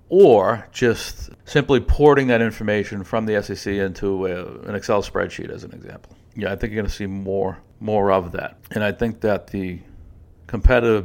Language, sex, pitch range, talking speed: English, male, 95-110 Hz, 185 wpm